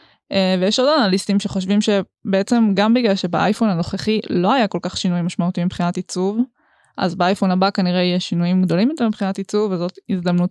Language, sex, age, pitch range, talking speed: Hebrew, female, 20-39, 180-215 Hz, 170 wpm